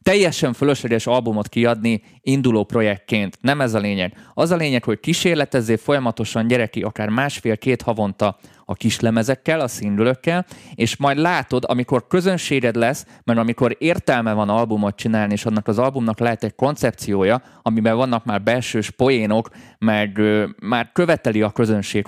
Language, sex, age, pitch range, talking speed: Hungarian, male, 20-39, 105-130 Hz, 150 wpm